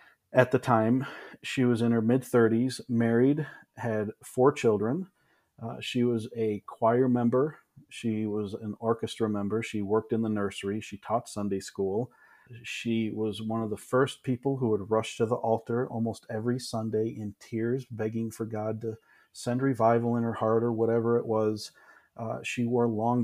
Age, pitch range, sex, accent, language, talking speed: 40-59, 105-120 Hz, male, American, English, 175 wpm